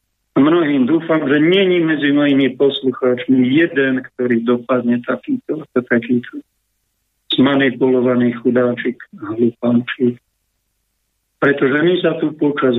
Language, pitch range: Slovak, 125-145 Hz